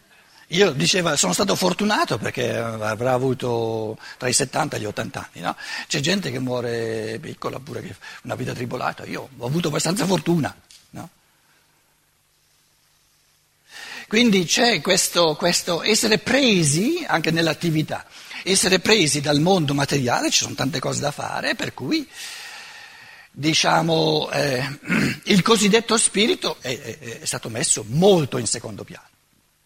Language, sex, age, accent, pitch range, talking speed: Italian, male, 60-79, native, 150-220 Hz, 135 wpm